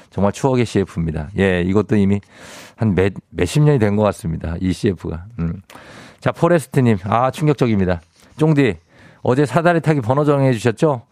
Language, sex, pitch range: Korean, male, 100-140 Hz